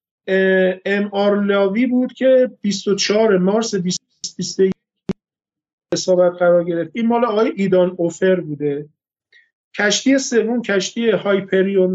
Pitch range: 180-230 Hz